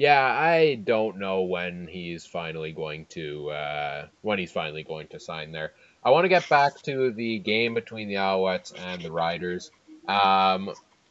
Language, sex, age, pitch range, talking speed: English, male, 20-39, 90-120 Hz, 175 wpm